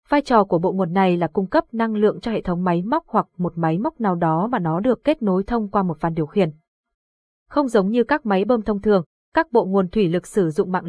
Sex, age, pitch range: female, 20-39, 180-235 Hz